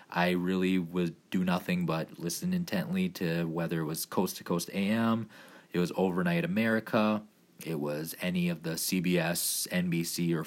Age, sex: 20-39, male